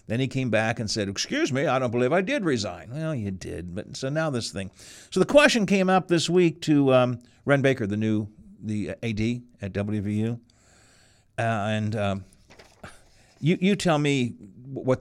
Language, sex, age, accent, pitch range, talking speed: English, male, 50-69, American, 105-135 Hz, 190 wpm